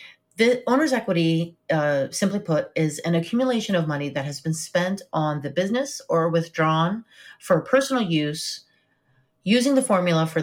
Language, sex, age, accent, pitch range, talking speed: English, female, 30-49, American, 155-210 Hz, 155 wpm